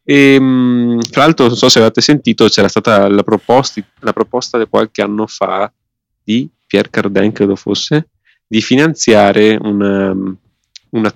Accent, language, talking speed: native, Italian, 145 wpm